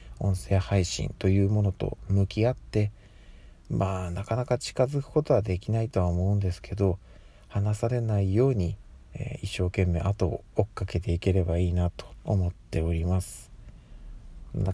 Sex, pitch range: male, 90-115 Hz